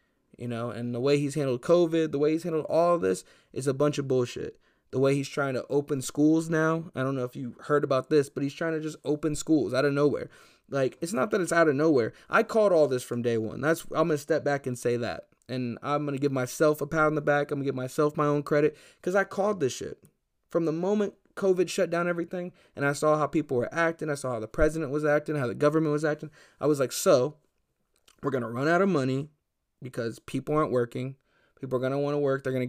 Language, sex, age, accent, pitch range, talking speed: English, male, 20-39, American, 130-155 Hz, 265 wpm